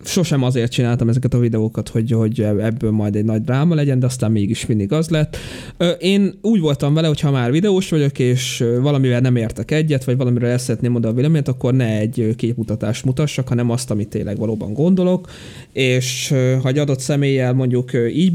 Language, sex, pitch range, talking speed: Hungarian, male, 120-155 Hz, 190 wpm